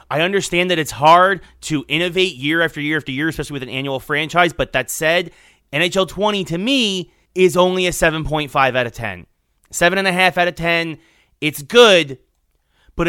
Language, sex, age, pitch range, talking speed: English, male, 30-49, 140-180 Hz, 175 wpm